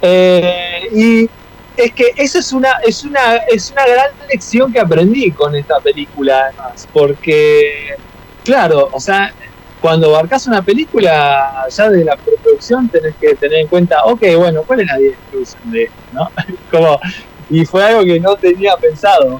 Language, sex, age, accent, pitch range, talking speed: Spanish, male, 20-39, Argentinian, 145-225 Hz, 160 wpm